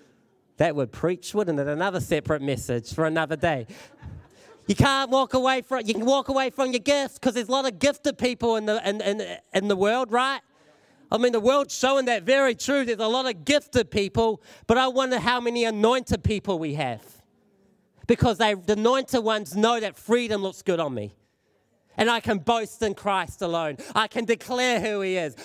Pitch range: 200-255 Hz